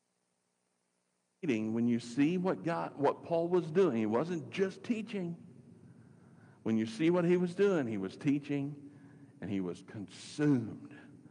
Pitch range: 110-145 Hz